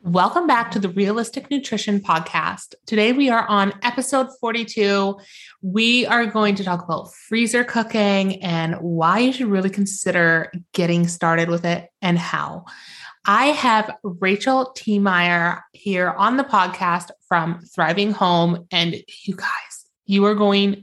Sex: female